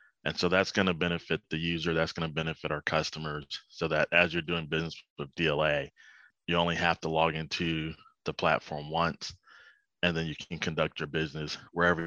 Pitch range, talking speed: 75-85 Hz, 195 wpm